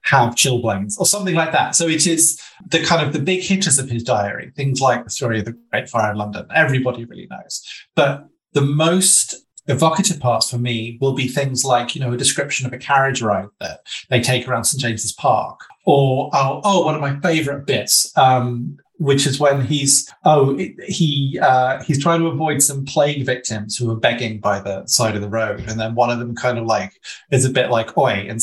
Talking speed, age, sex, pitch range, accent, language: 215 wpm, 30-49, male, 120-150 Hz, British, English